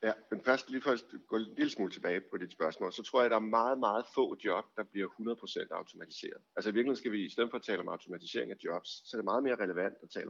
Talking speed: 280 wpm